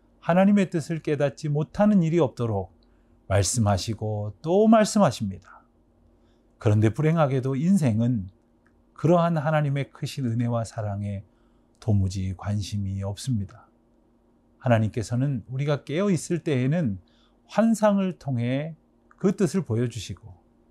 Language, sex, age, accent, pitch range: Korean, male, 40-59, native, 110-150 Hz